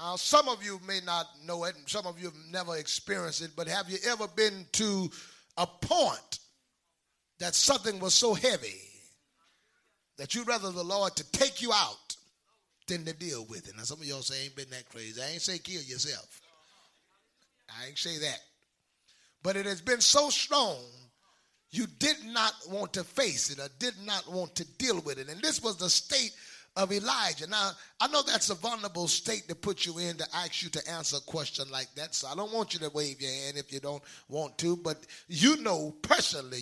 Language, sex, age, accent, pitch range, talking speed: English, male, 30-49, American, 165-220 Hz, 210 wpm